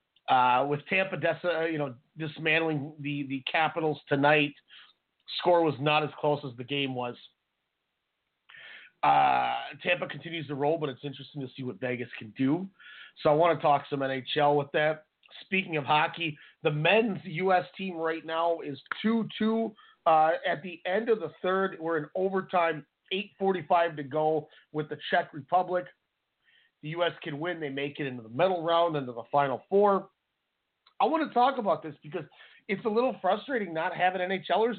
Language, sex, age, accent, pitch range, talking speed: English, male, 30-49, American, 150-190 Hz, 175 wpm